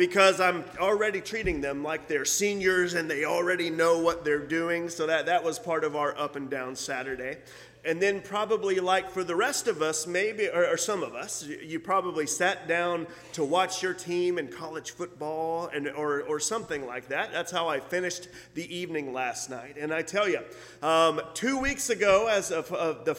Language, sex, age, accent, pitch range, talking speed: English, male, 30-49, American, 160-195 Hz, 205 wpm